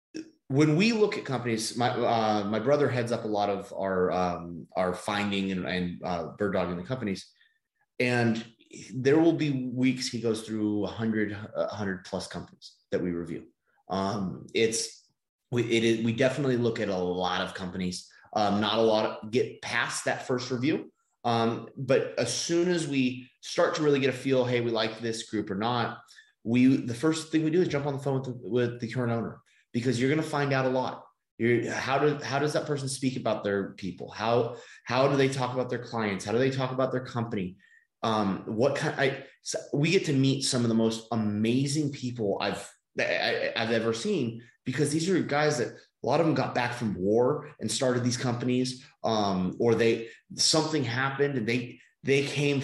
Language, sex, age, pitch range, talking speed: English, male, 30-49, 110-135 Hz, 205 wpm